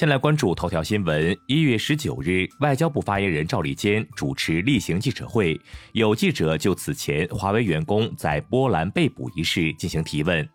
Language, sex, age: Chinese, male, 30-49